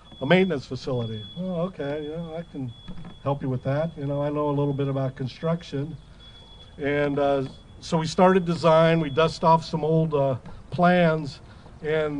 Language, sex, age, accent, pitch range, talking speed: English, male, 50-69, American, 135-165 Hz, 155 wpm